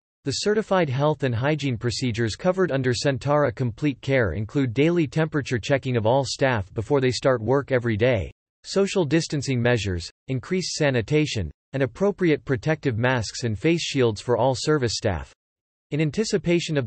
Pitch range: 120-150 Hz